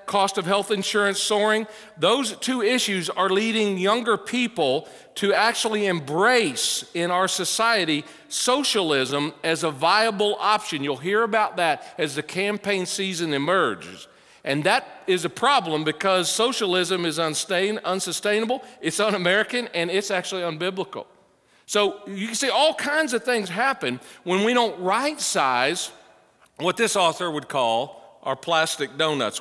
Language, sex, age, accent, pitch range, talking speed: English, male, 50-69, American, 170-220 Hz, 140 wpm